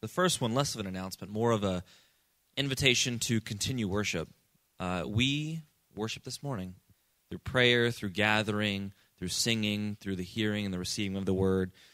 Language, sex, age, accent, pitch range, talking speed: English, male, 20-39, American, 100-130 Hz, 170 wpm